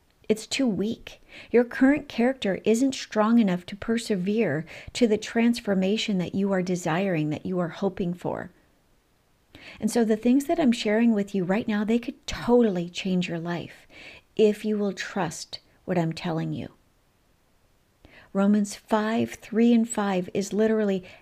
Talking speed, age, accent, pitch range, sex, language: 155 wpm, 50-69, American, 180-225 Hz, female, English